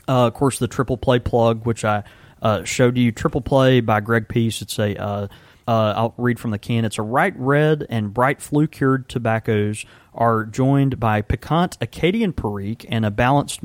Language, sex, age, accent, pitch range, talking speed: English, male, 30-49, American, 105-130 Hz, 195 wpm